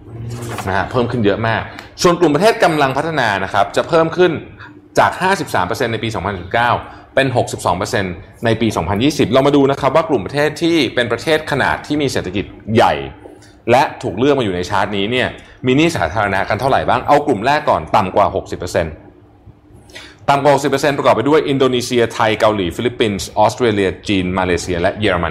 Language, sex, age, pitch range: Thai, male, 20-39, 95-130 Hz